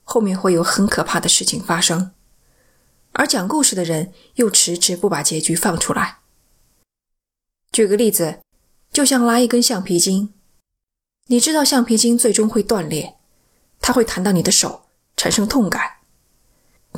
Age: 20-39